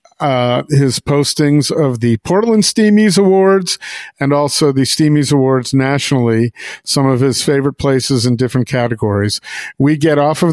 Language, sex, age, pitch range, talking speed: English, male, 50-69, 130-165 Hz, 150 wpm